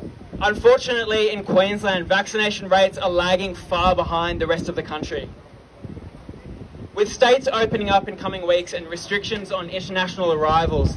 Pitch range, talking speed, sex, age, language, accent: 170-220 Hz, 140 wpm, male, 20-39, English, Australian